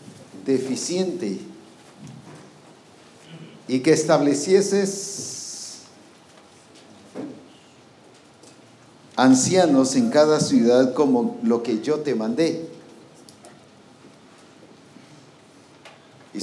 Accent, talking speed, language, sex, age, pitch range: Mexican, 55 wpm, English, male, 50-69, 130-180 Hz